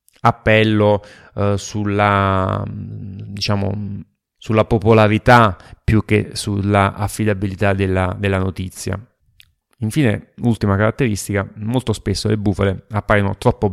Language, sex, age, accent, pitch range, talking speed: Italian, male, 30-49, native, 95-110 Hz, 95 wpm